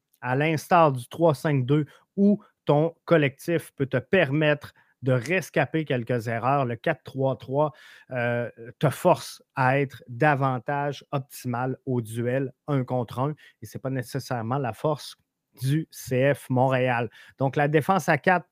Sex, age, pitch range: male, 30-49, 125-155 Hz